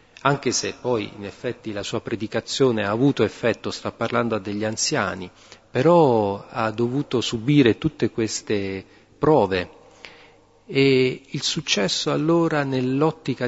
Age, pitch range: 40-59, 110-145 Hz